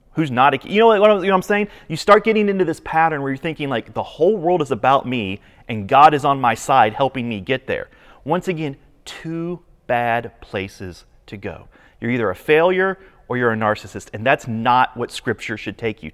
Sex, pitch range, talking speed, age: male, 125-185 Hz, 225 wpm, 30-49